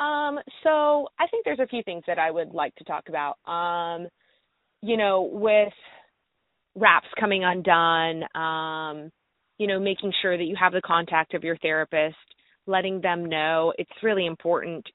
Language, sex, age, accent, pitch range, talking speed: English, female, 20-39, American, 170-205 Hz, 165 wpm